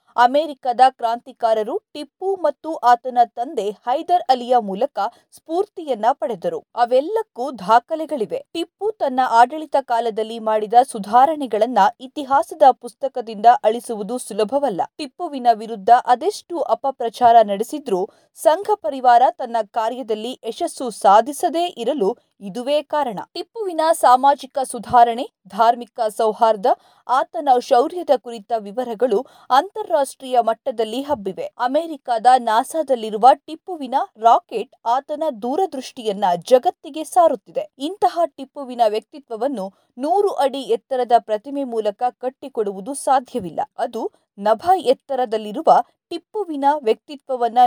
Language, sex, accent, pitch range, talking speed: Kannada, female, native, 235-310 Hz, 90 wpm